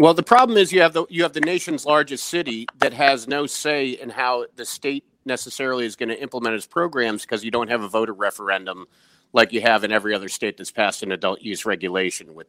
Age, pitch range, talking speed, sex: 40-59, 100-140 Hz, 235 wpm, male